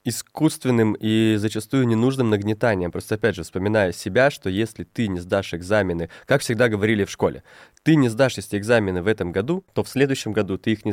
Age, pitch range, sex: 20-39, 105-130 Hz, male